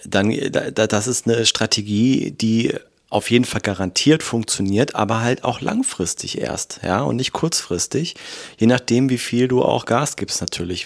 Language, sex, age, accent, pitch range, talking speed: German, male, 30-49, German, 110-130 Hz, 160 wpm